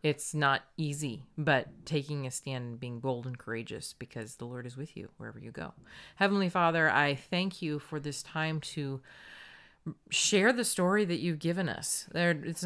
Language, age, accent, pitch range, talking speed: English, 30-49, American, 145-175 Hz, 180 wpm